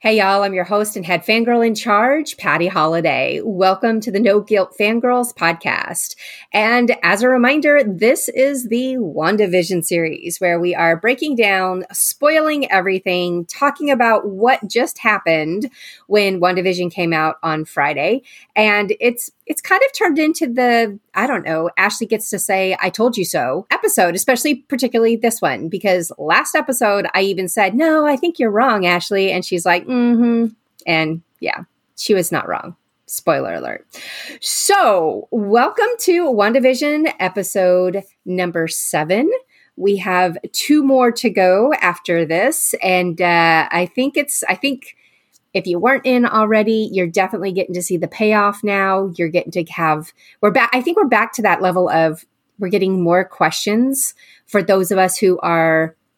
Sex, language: female, English